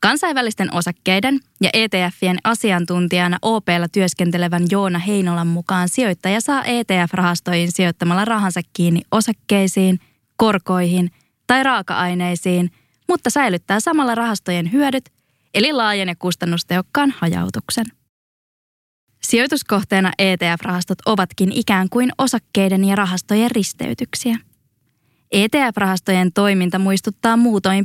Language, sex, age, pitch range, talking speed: Finnish, female, 20-39, 180-230 Hz, 95 wpm